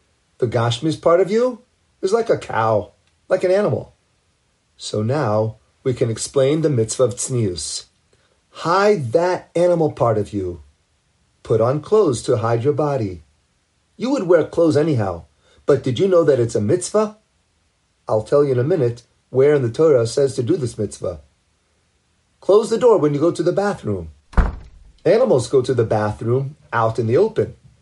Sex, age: male, 40-59